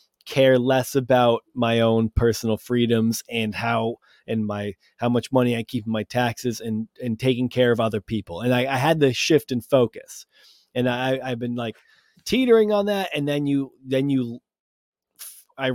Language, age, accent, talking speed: English, 20-39, American, 185 wpm